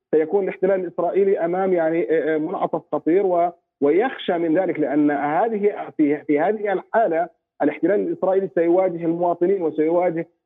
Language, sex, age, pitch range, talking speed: Arabic, male, 40-59, 165-200 Hz, 125 wpm